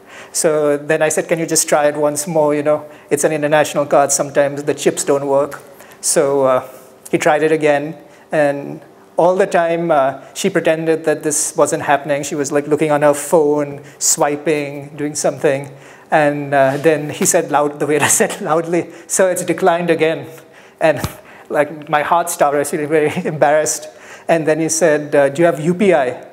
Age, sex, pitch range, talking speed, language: 30-49, male, 145-170 Hz, 180 wpm, English